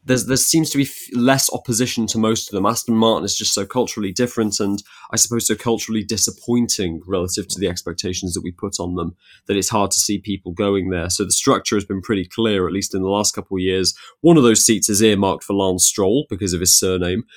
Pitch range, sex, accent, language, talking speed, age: 95-110 Hz, male, British, English, 235 wpm, 20-39